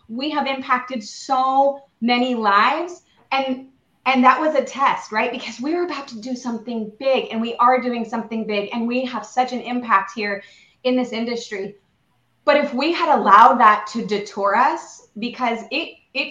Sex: female